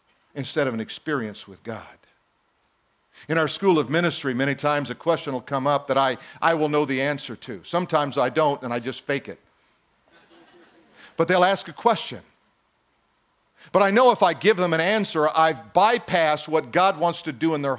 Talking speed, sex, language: 190 wpm, male, English